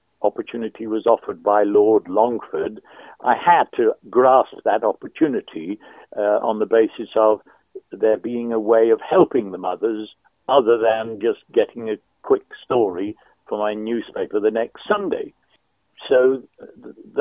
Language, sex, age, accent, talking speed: Hebrew, male, 60-79, British, 140 wpm